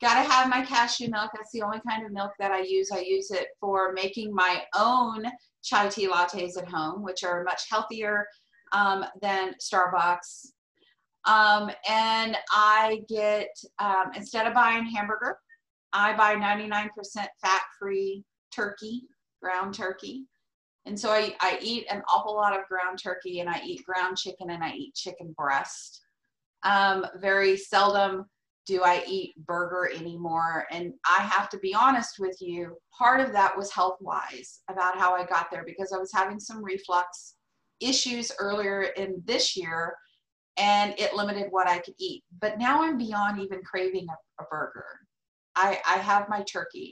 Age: 30-49